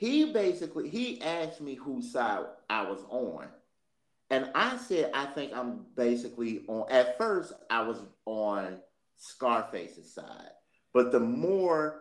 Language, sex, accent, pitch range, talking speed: English, male, American, 110-165 Hz, 140 wpm